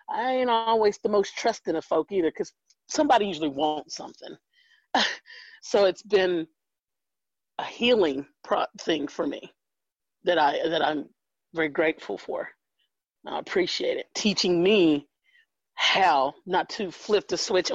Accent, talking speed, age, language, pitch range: American, 140 wpm, 40-59, English, 165-245 Hz